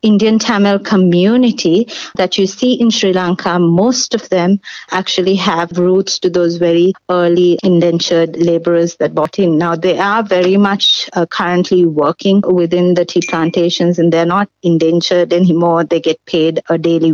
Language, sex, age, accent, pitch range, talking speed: Tamil, female, 30-49, native, 170-195 Hz, 160 wpm